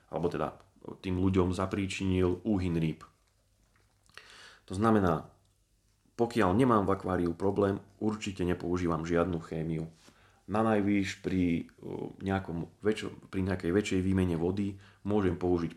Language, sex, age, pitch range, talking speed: Slovak, male, 30-49, 85-105 Hz, 100 wpm